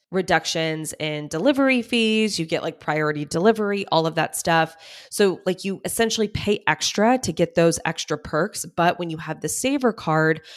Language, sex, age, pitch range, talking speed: English, female, 20-39, 160-195 Hz, 175 wpm